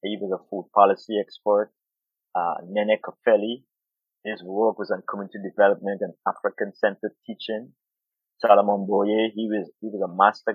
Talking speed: 150 wpm